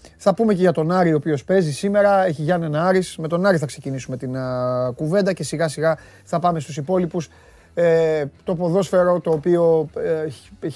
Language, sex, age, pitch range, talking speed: Greek, male, 30-49, 130-165 Hz, 185 wpm